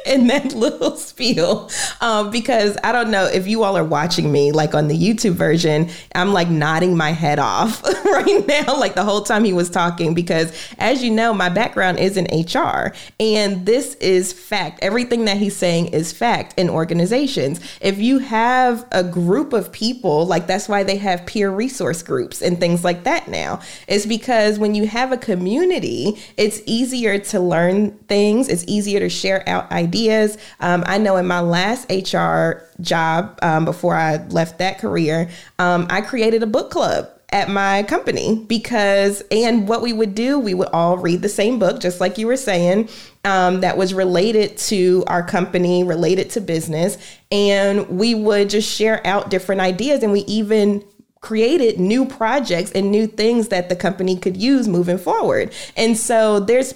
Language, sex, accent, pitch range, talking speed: English, female, American, 175-225 Hz, 185 wpm